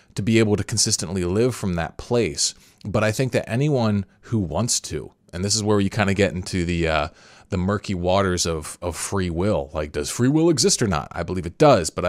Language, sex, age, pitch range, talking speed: English, male, 30-49, 90-110 Hz, 235 wpm